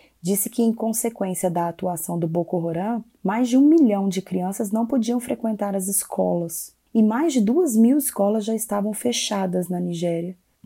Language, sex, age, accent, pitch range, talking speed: Portuguese, female, 20-39, Brazilian, 180-230 Hz, 175 wpm